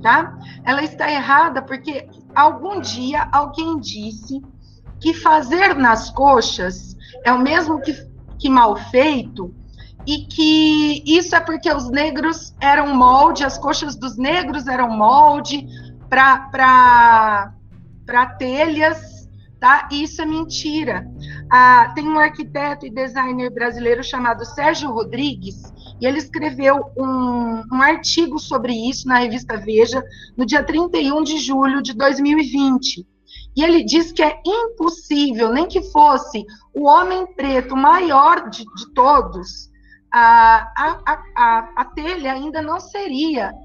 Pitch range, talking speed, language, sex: 250-315 Hz, 120 wpm, Portuguese, female